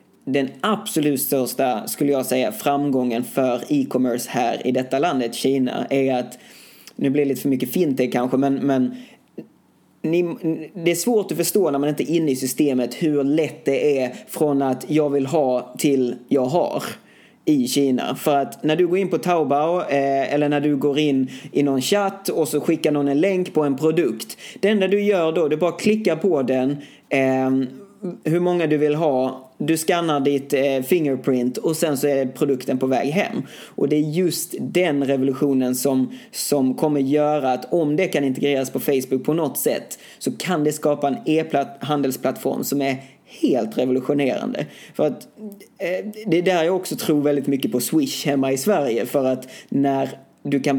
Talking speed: 185 wpm